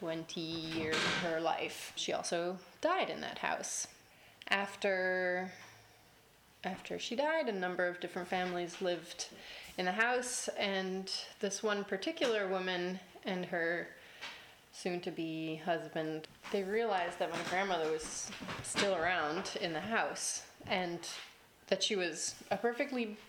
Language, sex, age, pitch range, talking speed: English, female, 20-39, 165-195 Hz, 135 wpm